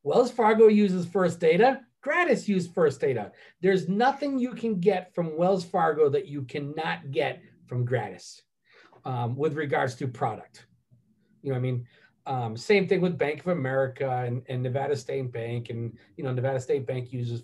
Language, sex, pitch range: English, male, 125-180 Hz